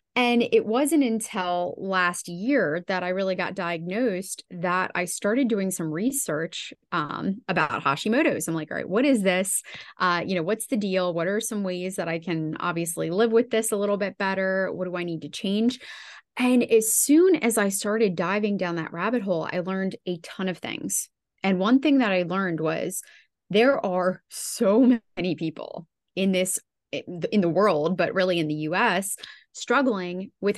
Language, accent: English, American